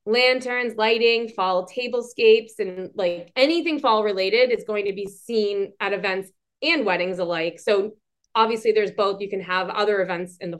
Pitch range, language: 185-240 Hz, English